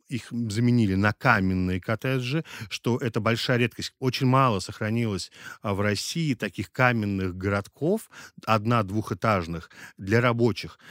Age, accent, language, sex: 30-49, native, Russian, male